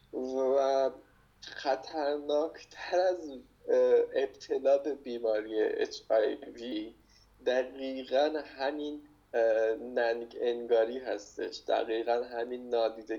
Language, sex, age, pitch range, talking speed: Persian, male, 20-39, 120-185 Hz, 70 wpm